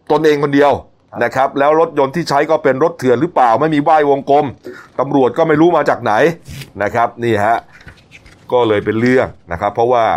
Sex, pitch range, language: male, 110-140 Hz, Thai